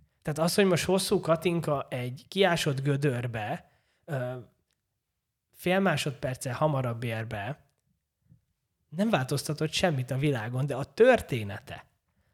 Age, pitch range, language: 20-39, 125-175 Hz, Hungarian